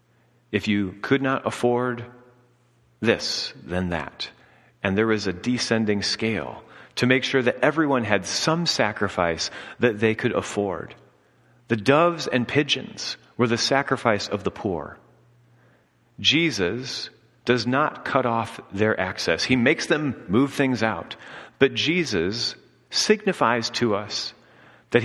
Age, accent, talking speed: 40-59, American, 130 wpm